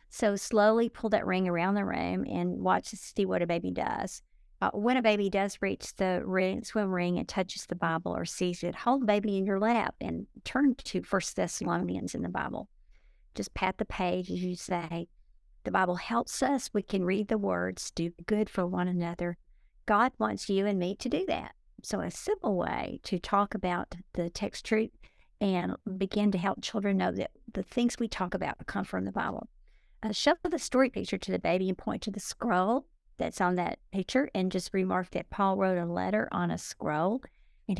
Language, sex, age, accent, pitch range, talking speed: English, female, 50-69, American, 180-220 Hz, 210 wpm